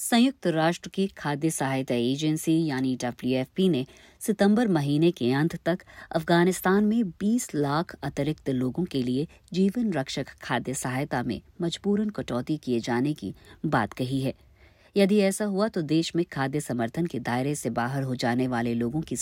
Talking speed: 160 wpm